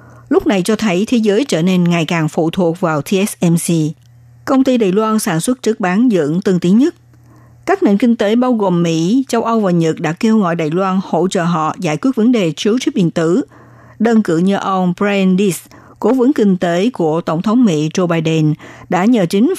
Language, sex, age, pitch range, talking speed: Vietnamese, female, 60-79, 170-230 Hz, 220 wpm